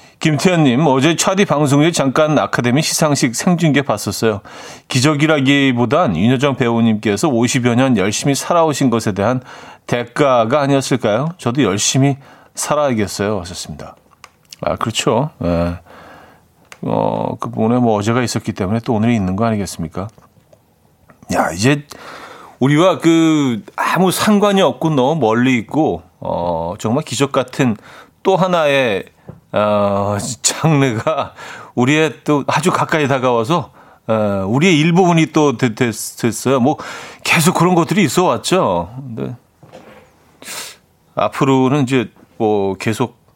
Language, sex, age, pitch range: Korean, male, 40-59, 115-155 Hz